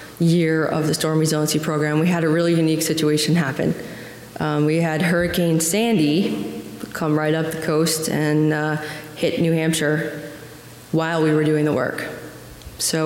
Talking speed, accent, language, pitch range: 160 wpm, American, English, 150-165 Hz